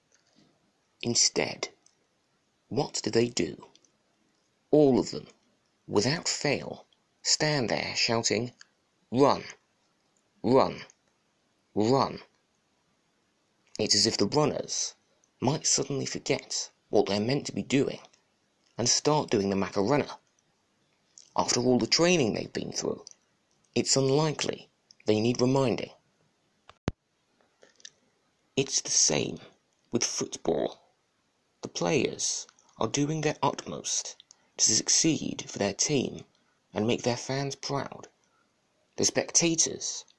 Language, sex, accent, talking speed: English, male, British, 105 wpm